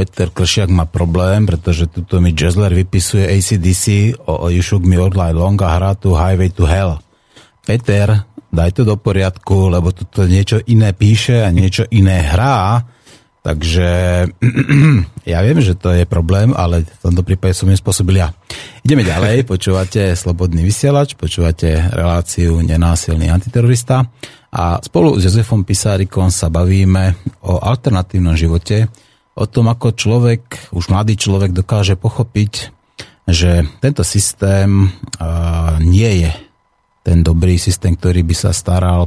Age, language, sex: 30-49, Slovak, male